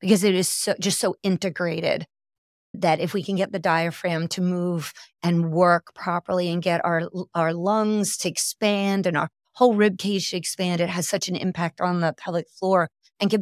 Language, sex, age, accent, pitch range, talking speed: English, female, 40-59, American, 170-195 Hz, 195 wpm